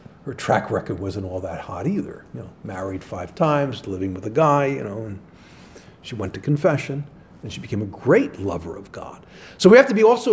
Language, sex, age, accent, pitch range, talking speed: English, male, 50-69, American, 110-155 Hz, 220 wpm